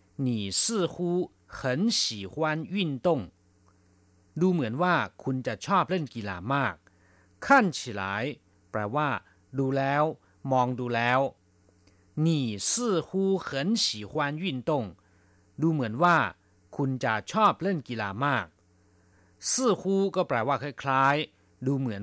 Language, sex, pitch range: Thai, male, 95-145 Hz